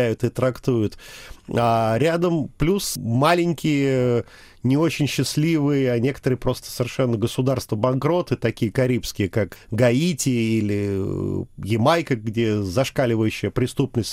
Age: 40-59